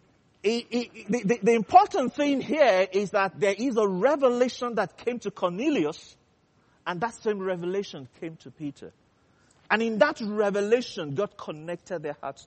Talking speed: 145 wpm